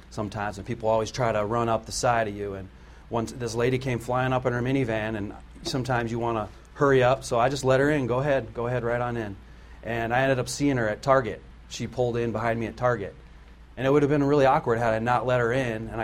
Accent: American